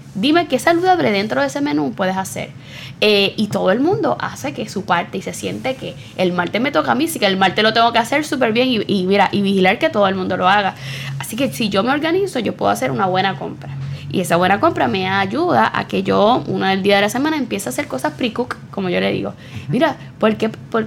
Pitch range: 180-245 Hz